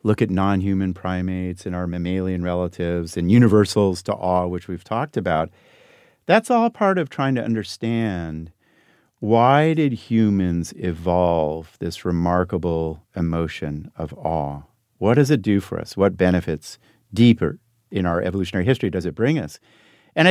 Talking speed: 150 wpm